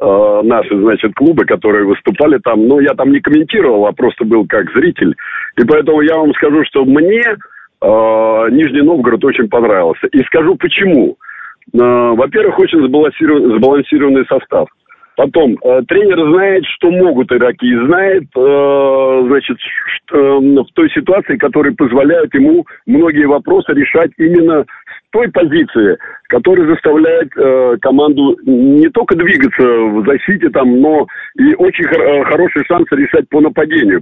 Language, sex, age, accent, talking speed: Russian, male, 50-69, native, 145 wpm